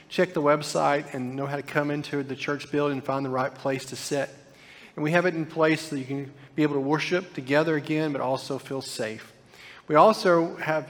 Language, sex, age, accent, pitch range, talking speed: English, male, 40-59, American, 135-160 Hz, 230 wpm